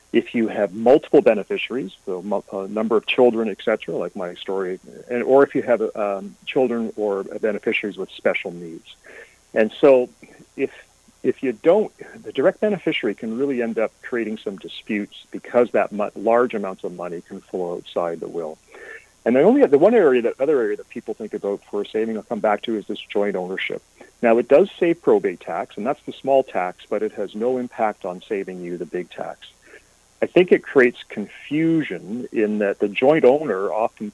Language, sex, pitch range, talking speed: English, male, 105-135 Hz, 195 wpm